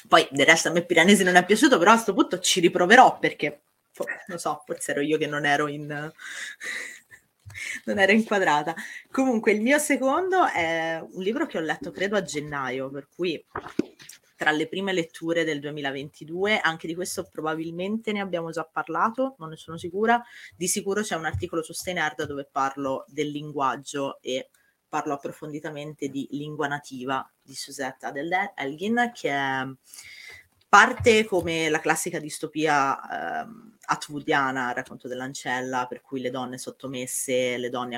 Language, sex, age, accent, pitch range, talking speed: Italian, female, 30-49, native, 135-180 Hz, 155 wpm